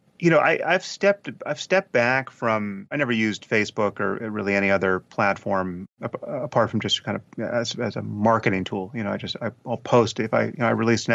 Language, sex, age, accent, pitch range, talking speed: English, male, 30-49, American, 100-120 Hz, 225 wpm